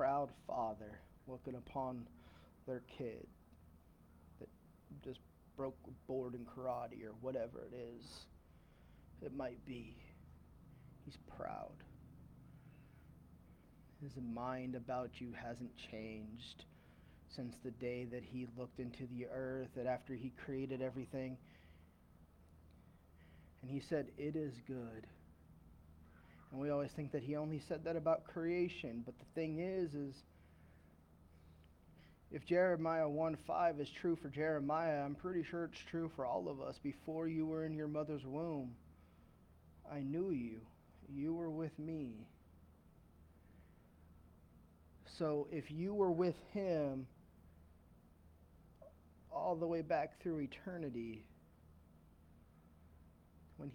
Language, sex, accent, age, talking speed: English, male, American, 30-49, 120 wpm